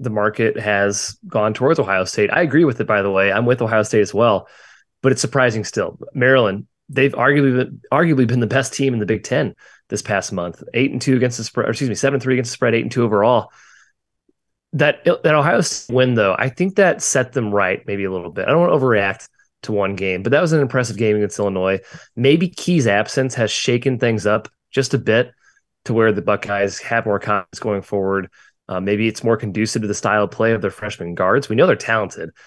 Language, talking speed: English, 235 wpm